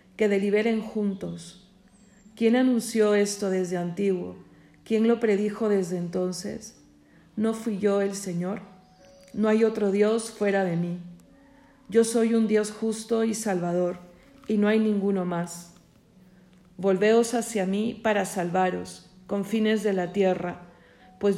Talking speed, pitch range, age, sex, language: 135 wpm, 180-215 Hz, 40-59, female, Spanish